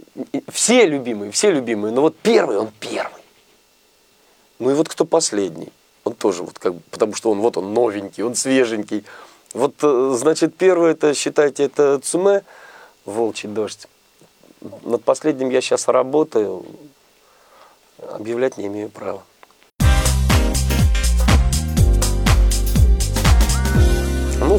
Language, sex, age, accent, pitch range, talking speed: Russian, male, 40-59, native, 95-155 Hz, 110 wpm